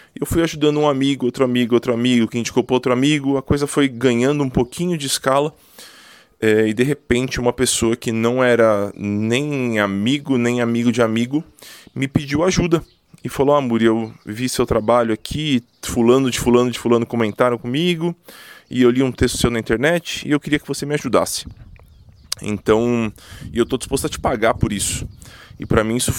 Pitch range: 110-135 Hz